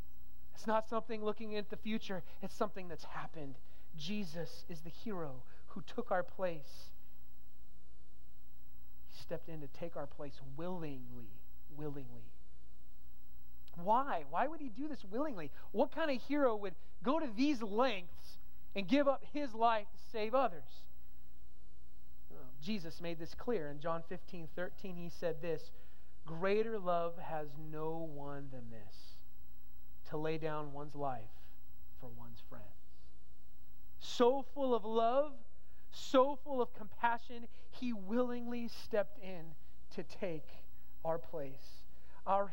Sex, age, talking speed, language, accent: male, 30-49, 135 wpm, English, American